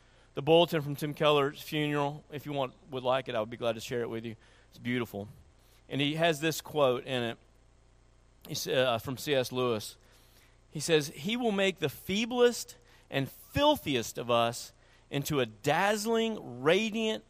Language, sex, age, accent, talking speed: English, male, 40-59, American, 170 wpm